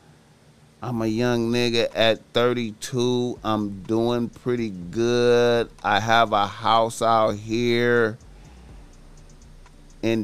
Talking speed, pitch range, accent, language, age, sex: 100 wpm, 105-125 Hz, American, English, 30-49, male